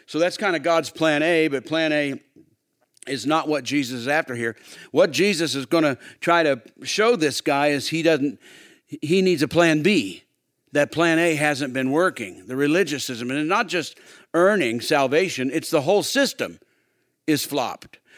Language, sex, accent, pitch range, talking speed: English, male, American, 140-180 Hz, 200 wpm